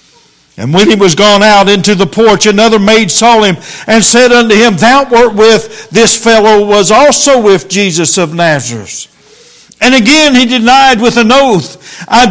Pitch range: 180-250 Hz